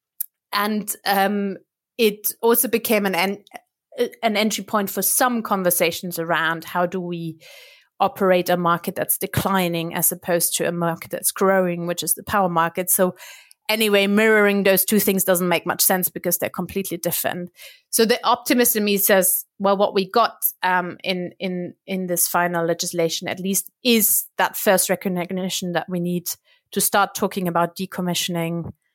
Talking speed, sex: 160 wpm, female